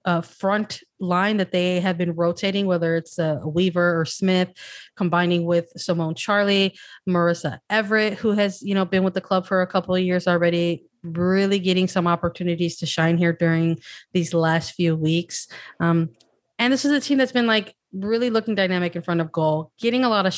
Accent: American